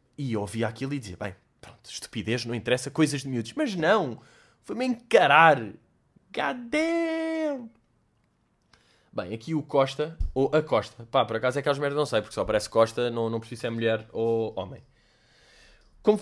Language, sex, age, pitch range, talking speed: Portuguese, male, 20-39, 110-140 Hz, 170 wpm